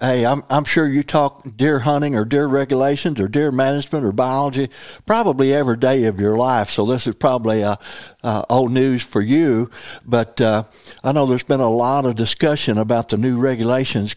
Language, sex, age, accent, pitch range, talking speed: English, male, 60-79, American, 110-135 Hz, 195 wpm